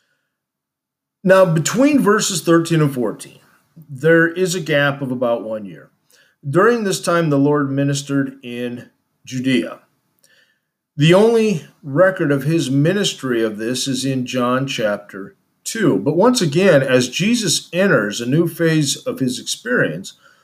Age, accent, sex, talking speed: 40-59, American, male, 140 wpm